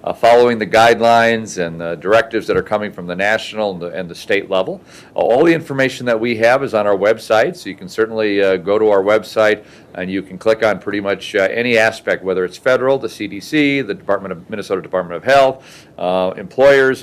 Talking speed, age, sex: 215 wpm, 40-59, male